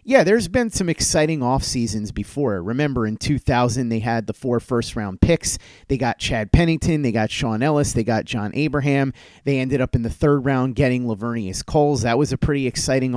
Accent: American